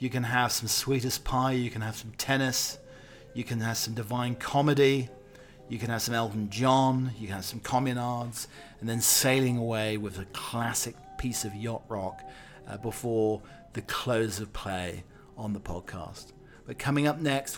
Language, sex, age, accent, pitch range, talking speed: English, male, 40-59, British, 115-135 Hz, 180 wpm